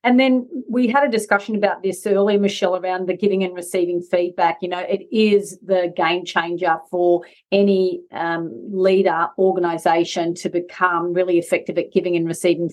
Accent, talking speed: Australian, 170 wpm